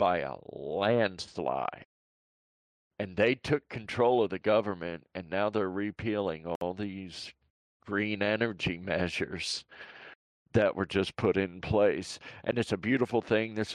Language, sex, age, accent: English, male, 50-69, American